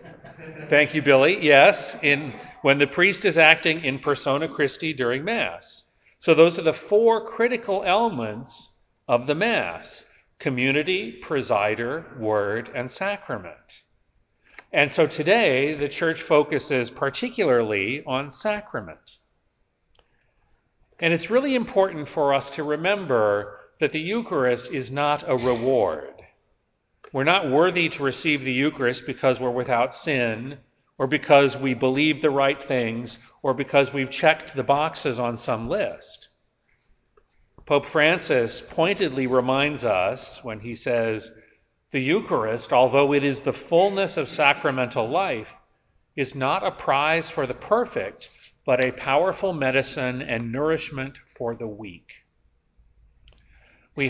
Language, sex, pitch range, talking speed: English, male, 125-160 Hz, 130 wpm